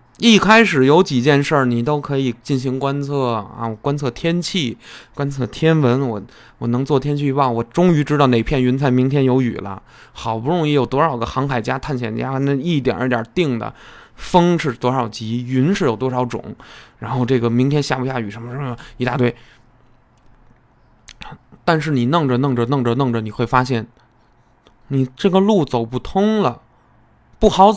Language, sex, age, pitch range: Chinese, male, 20-39, 120-160 Hz